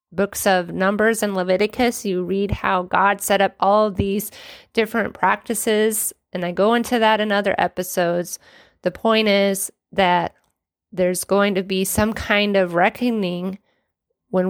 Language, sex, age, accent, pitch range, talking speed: English, female, 30-49, American, 185-225 Hz, 150 wpm